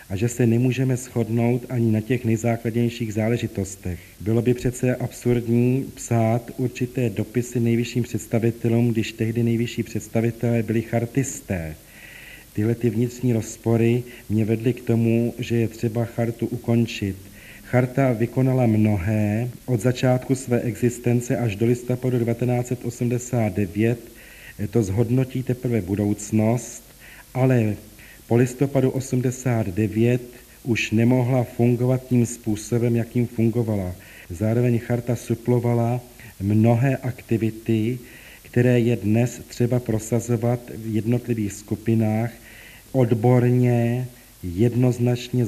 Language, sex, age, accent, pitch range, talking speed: Czech, male, 40-59, native, 110-125 Hz, 105 wpm